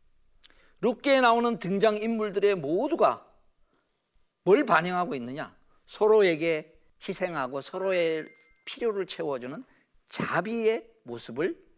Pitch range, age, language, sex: 175-275 Hz, 40-59, Korean, male